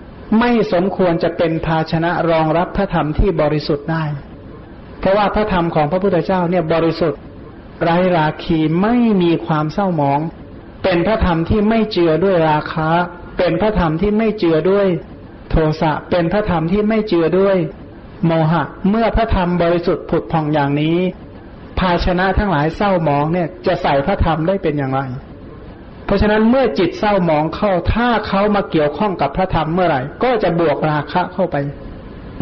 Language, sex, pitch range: Thai, male, 155-190 Hz